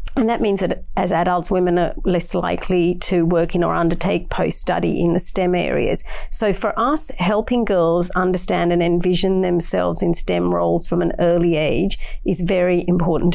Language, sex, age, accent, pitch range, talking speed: English, female, 40-59, Australian, 170-185 Hz, 175 wpm